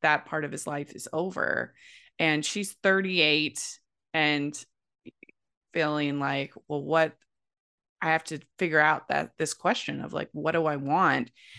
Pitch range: 145-185 Hz